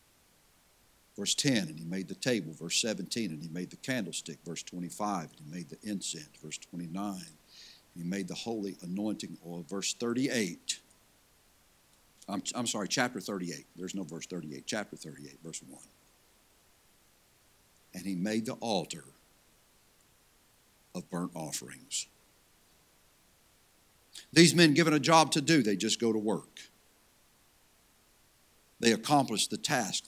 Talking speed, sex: 135 wpm, male